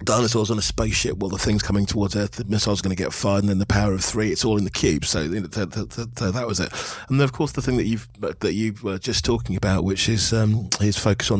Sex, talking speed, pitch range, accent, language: male, 295 wpm, 100-120 Hz, British, English